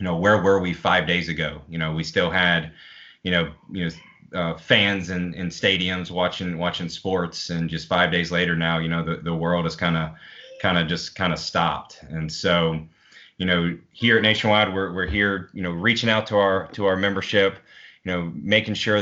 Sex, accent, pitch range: male, American, 85-95 Hz